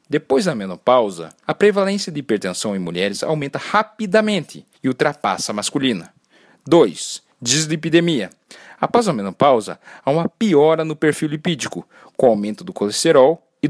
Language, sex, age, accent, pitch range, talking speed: Portuguese, male, 40-59, Brazilian, 130-195 Hz, 135 wpm